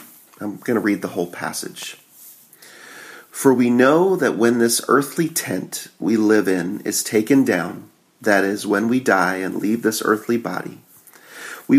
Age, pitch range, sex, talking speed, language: 40-59, 95-120 Hz, male, 165 wpm, English